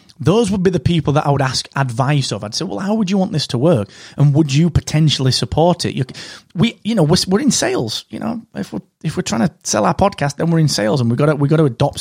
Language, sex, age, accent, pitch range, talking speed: English, male, 30-49, British, 130-185 Hz, 270 wpm